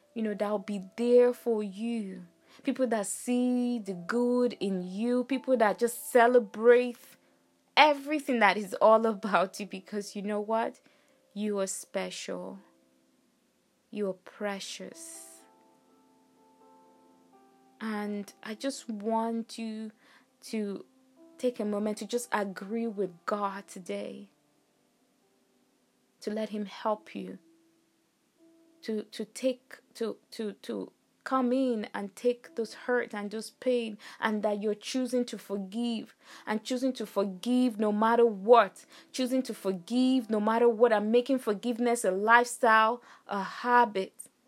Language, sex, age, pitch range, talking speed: English, female, 20-39, 200-250 Hz, 130 wpm